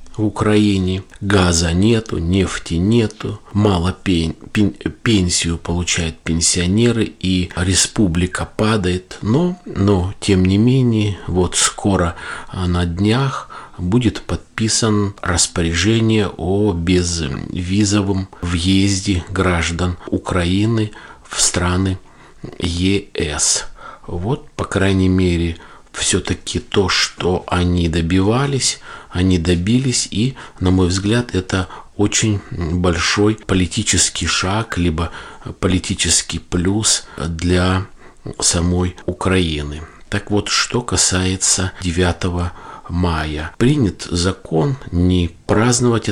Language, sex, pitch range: Russian, male, 85-105 Hz